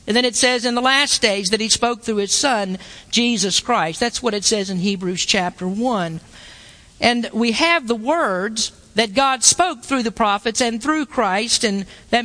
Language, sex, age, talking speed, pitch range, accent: English, female, 50-69, 195 wpm, 215-275 Hz, American